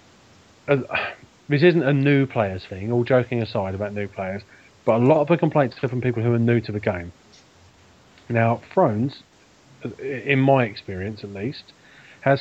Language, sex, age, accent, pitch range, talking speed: English, male, 30-49, British, 110-135 Hz, 175 wpm